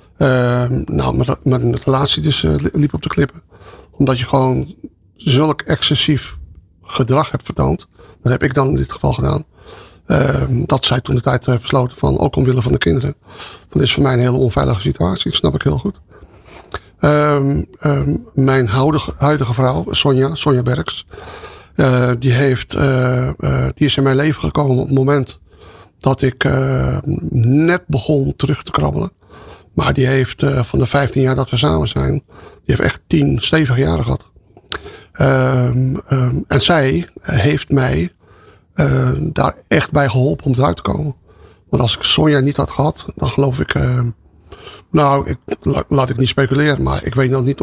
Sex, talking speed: male, 180 wpm